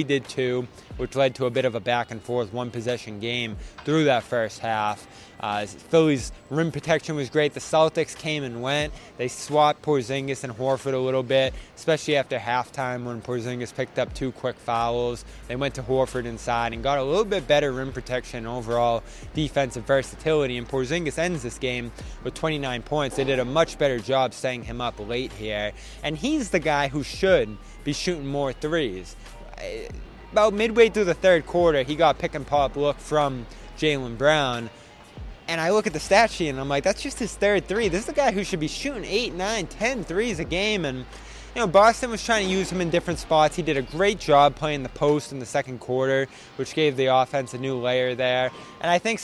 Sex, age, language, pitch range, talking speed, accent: male, 20-39, English, 125-160 Hz, 210 wpm, American